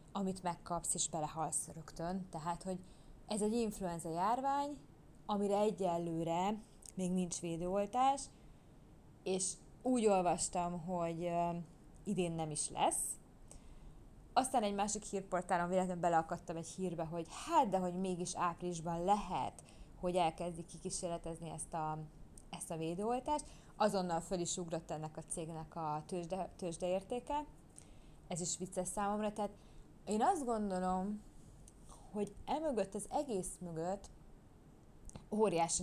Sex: female